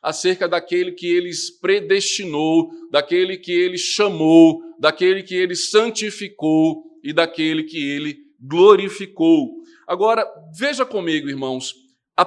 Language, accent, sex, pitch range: Portuguese, Brazilian, male, 160-225 Hz